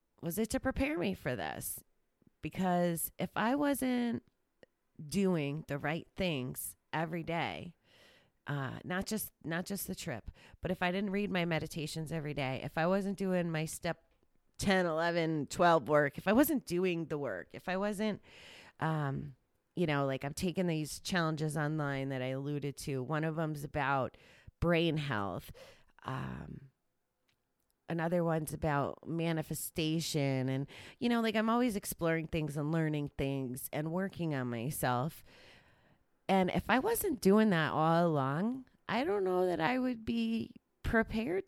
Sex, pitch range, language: female, 150-190 Hz, English